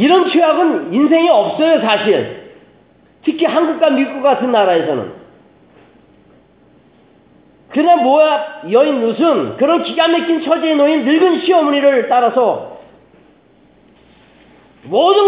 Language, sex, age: Korean, male, 40-59